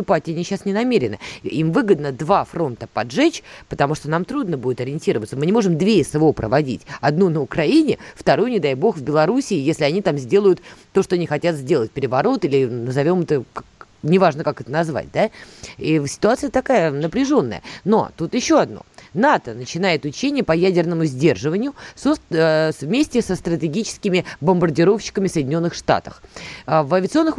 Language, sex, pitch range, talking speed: Russian, female, 155-215 Hz, 155 wpm